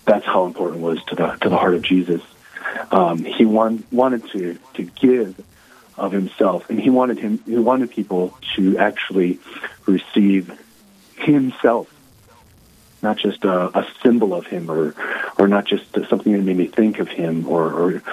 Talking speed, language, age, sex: 170 wpm, English, 40-59, male